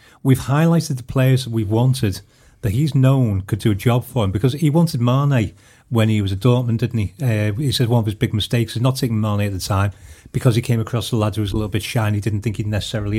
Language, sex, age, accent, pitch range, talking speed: English, male, 40-59, British, 110-130 Hz, 275 wpm